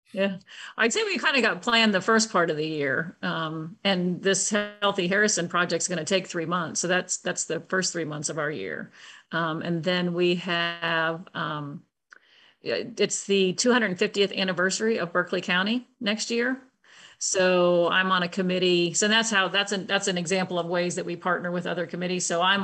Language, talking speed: English, 195 wpm